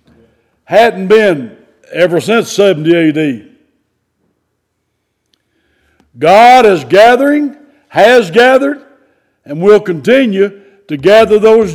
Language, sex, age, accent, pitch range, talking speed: English, male, 60-79, American, 170-245 Hz, 85 wpm